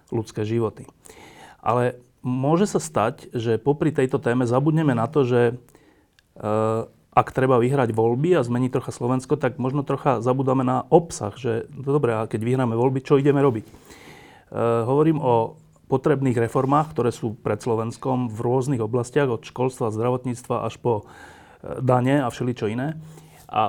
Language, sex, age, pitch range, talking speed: Slovak, male, 30-49, 115-145 Hz, 155 wpm